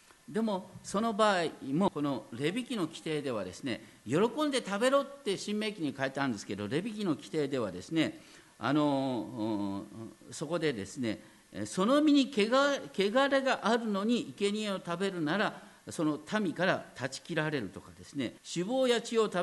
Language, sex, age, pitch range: Japanese, male, 50-69, 145-215 Hz